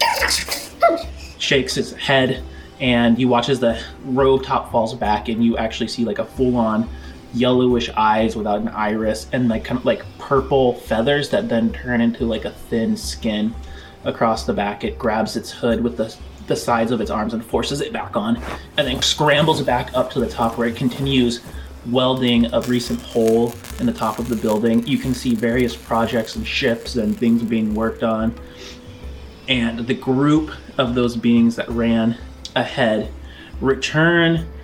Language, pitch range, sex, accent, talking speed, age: English, 110-125 Hz, male, American, 175 wpm, 20-39